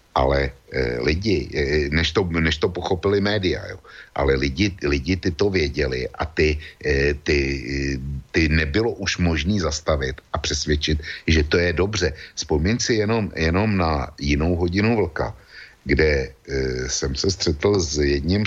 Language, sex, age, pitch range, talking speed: Slovak, male, 60-79, 75-90 Hz, 155 wpm